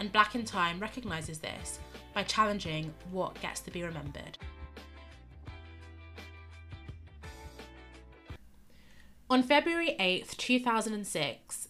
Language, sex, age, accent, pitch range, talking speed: English, female, 20-39, British, 155-215 Hz, 90 wpm